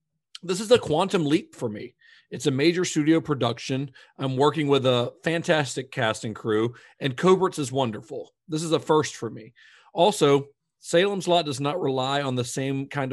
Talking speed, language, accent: 185 wpm, English, American